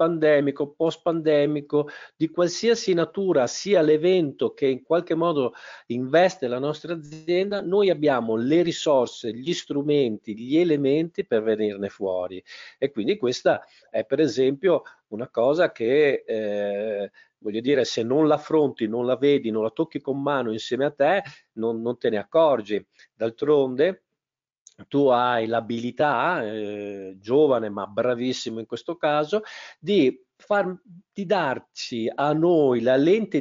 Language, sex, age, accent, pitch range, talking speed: Italian, male, 50-69, native, 130-185 Hz, 140 wpm